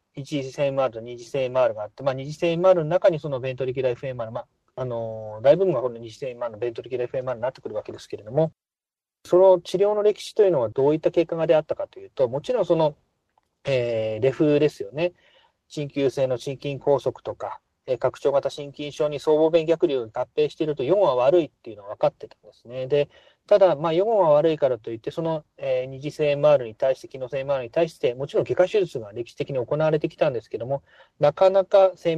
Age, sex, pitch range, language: 30-49, male, 130-175 Hz, Japanese